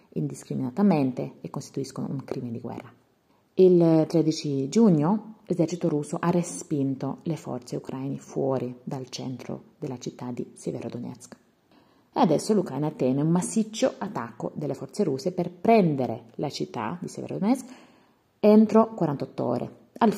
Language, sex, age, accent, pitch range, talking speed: Italian, female, 30-49, native, 135-200 Hz, 130 wpm